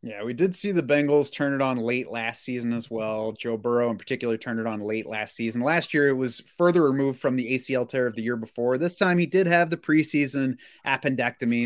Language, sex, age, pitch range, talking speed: English, male, 30-49, 110-135 Hz, 235 wpm